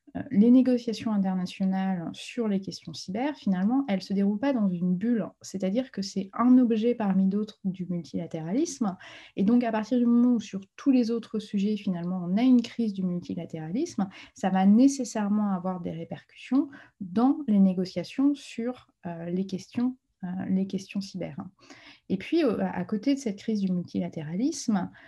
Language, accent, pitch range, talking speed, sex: French, French, 190-250 Hz, 165 wpm, female